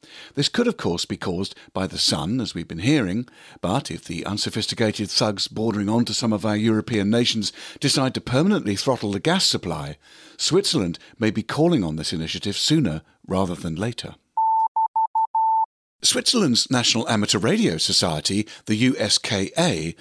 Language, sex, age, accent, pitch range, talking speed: English, male, 50-69, British, 100-145 Hz, 155 wpm